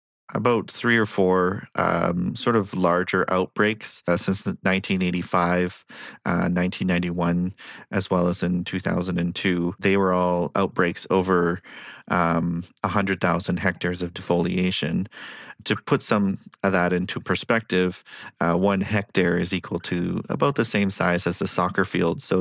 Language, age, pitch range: English, 30-49, 90-105 Hz